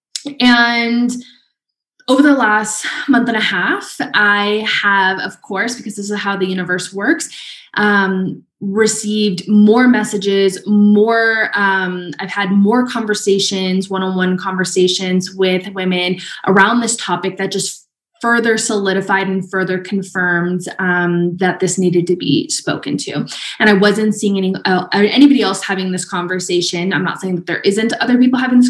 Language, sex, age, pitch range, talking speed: English, female, 20-39, 185-220 Hz, 155 wpm